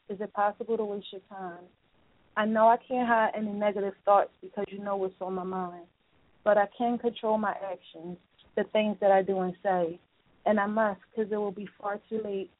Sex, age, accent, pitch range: female, 30-49, American, 190-220 Hz